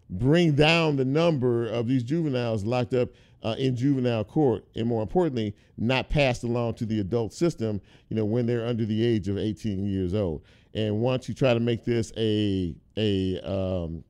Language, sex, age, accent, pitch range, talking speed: English, male, 50-69, American, 110-140 Hz, 185 wpm